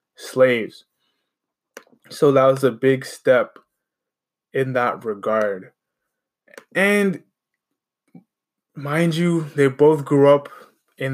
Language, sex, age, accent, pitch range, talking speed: English, male, 20-39, American, 115-140 Hz, 95 wpm